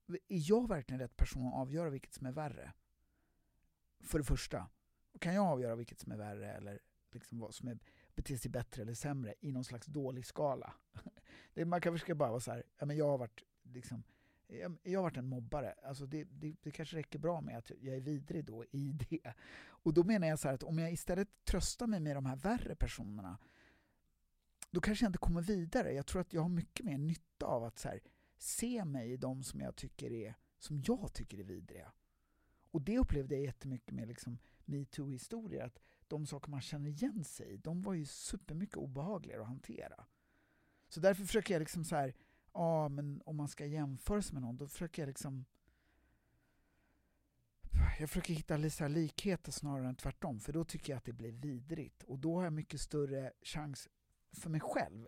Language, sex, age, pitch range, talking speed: English, male, 50-69, 120-165 Hz, 205 wpm